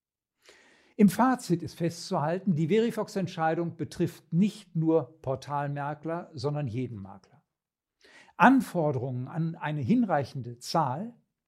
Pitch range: 150-195 Hz